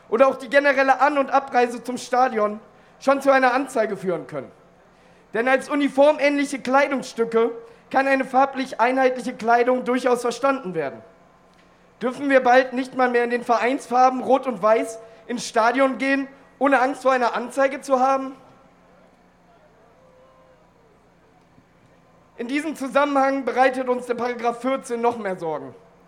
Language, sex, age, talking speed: German, male, 40-59, 140 wpm